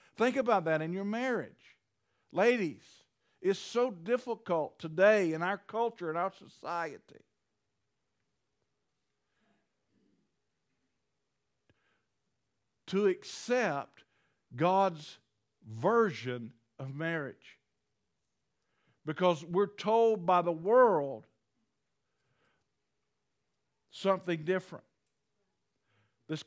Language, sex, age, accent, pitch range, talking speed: English, male, 50-69, American, 155-205 Hz, 75 wpm